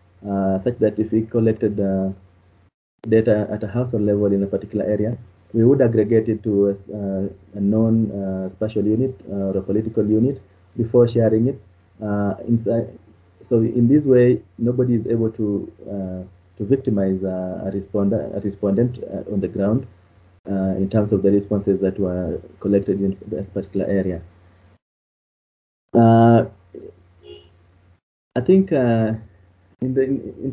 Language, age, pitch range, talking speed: English, 30-49, 100-120 Hz, 155 wpm